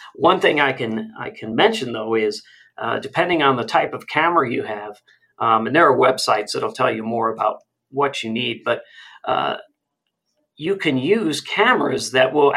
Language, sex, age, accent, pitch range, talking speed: English, male, 40-59, American, 115-145 Hz, 185 wpm